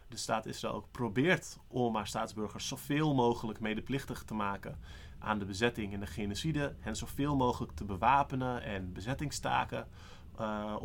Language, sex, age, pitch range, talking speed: Dutch, male, 30-49, 100-125 Hz, 145 wpm